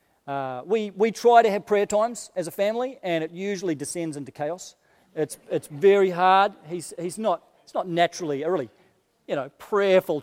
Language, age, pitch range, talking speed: English, 40-59, 155-200 Hz, 190 wpm